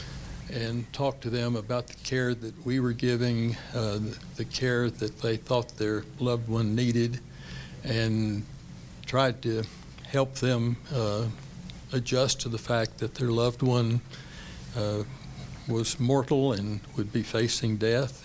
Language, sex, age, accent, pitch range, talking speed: English, male, 60-79, American, 115-135 Hz, 145 wpm